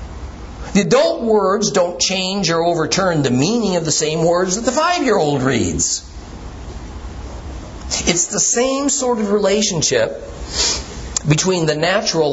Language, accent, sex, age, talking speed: English, American, male, 50-69, 125 wpm